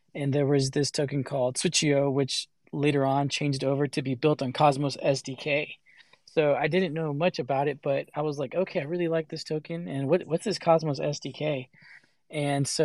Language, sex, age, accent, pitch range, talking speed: English, male, 20-39, American, 140-155 Hz, 195 wpm